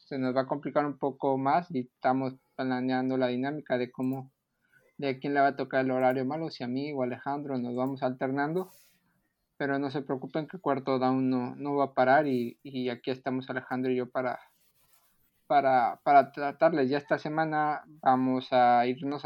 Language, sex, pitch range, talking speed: Spanish, male, 130-145 Hz, 190 wpm